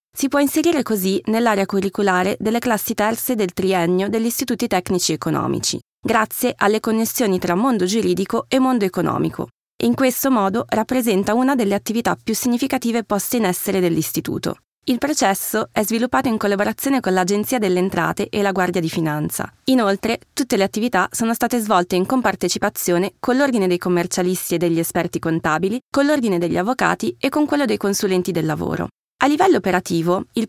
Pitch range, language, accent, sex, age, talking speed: 185-245 Hz, Italian, native, female, 20-39, 165 wpm